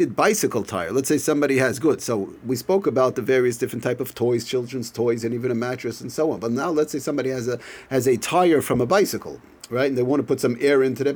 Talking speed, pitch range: 260 wpm, 120-160 Hz